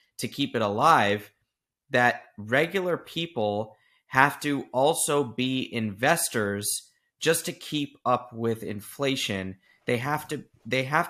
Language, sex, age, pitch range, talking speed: English, male, 30-49, 110-135 Hz, 125 wpm